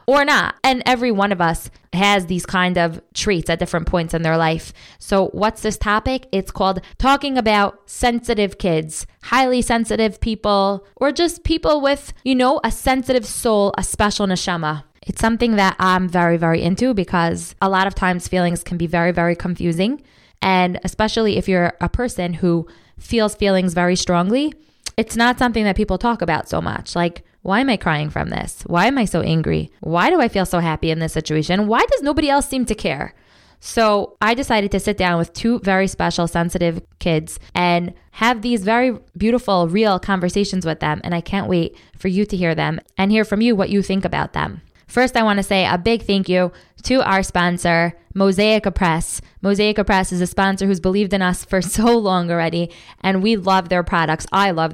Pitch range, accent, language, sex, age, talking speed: 175-220 Hz, American, English, female, 20-39, 200 wpm